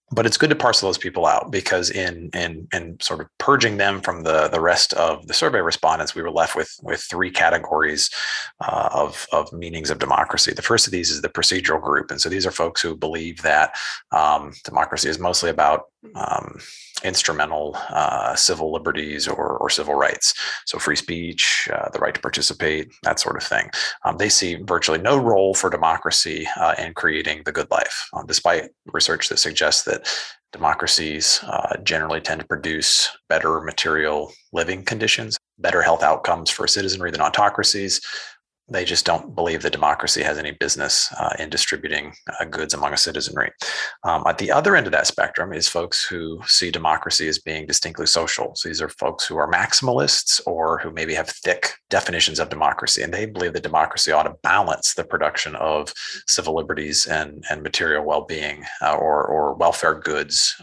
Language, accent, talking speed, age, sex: English, American, 185 wpm, 30-49, male